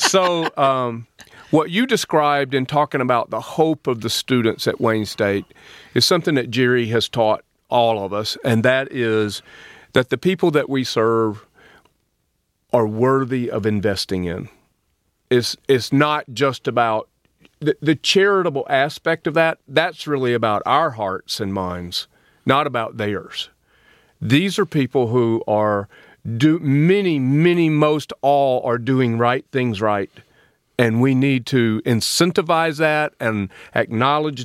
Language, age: English, 40-59